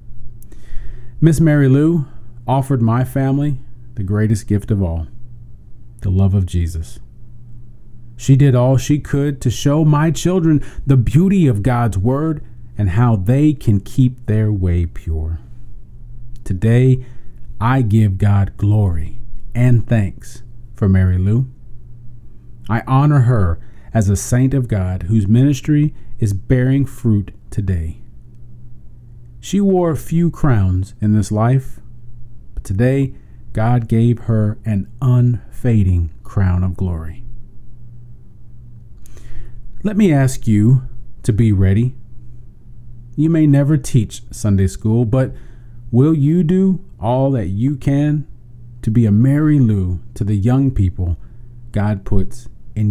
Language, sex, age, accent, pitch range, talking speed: English, male, 40-59, American, 105-125 Hz, 125 wpm